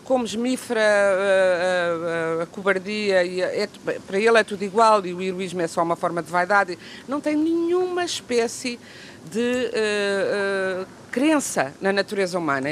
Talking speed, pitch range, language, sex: 160 wpm, 170-215 Hz, Portuguese, female